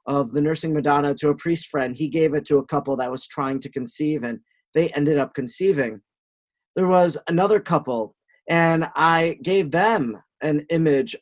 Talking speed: 180 wpm